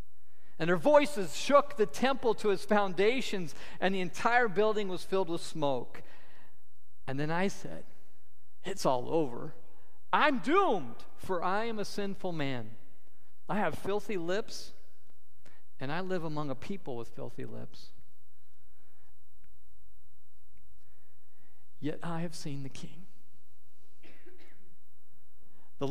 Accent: American